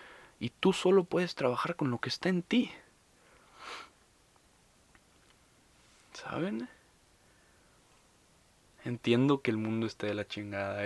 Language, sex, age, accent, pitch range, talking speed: English, male, 20-39, Mexican, 105-135 Hz, 110 wpm